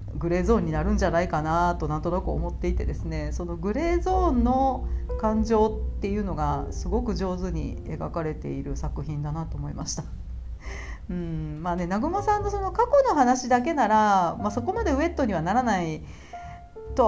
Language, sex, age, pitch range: Japanese, female, 40-59, 160-245 Hz